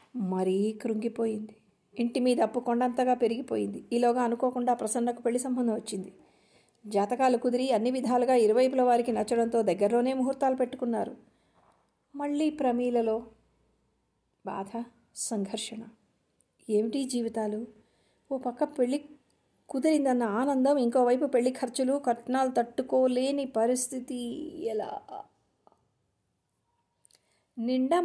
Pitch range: 220-255 Hz